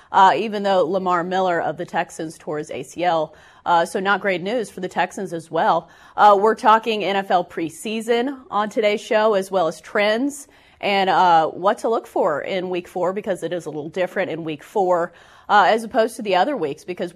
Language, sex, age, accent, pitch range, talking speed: English, female, 30-49, American, 175-220 Hz, 205 wpm